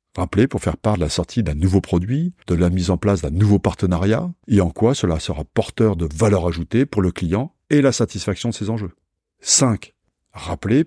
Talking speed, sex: 210 wpm, male